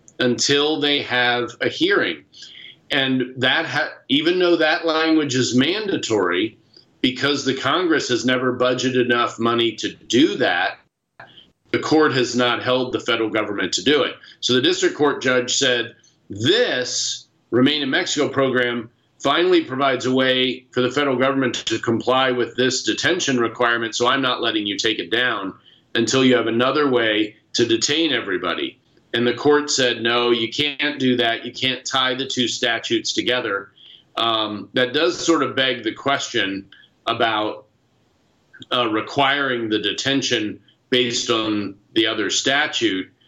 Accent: American